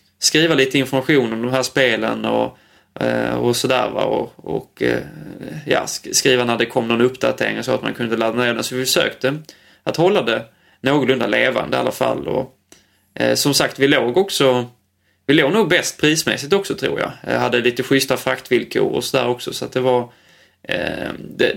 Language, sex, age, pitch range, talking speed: Swedish, male, 20-39, 120-135 Hz, 185 wpm